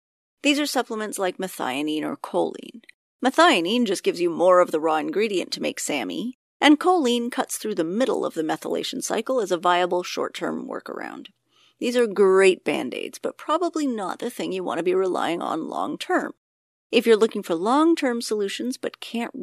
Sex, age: female, 30-49